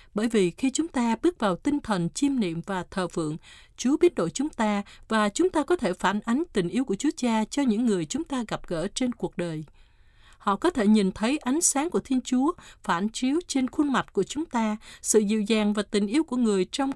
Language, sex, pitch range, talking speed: Vietnamese, female, 195-275 Hz, 240 wpm